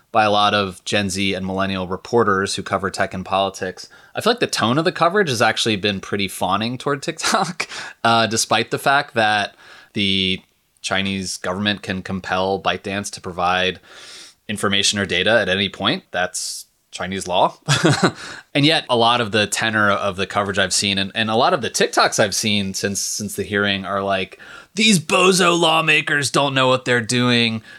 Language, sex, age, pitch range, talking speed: English, male, 20-39, 100-120 Hz, 185 wpm